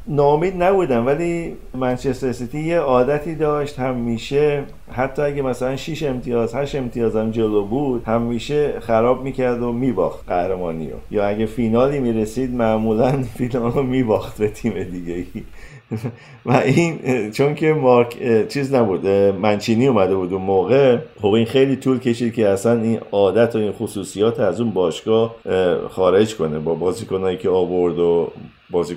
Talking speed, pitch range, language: 155 wpm, 100-125 Hz, Persian